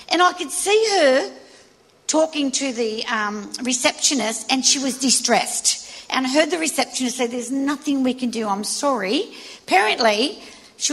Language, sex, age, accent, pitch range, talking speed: English, female, 50-69, Australian, 240-290 Hz, 160 wpm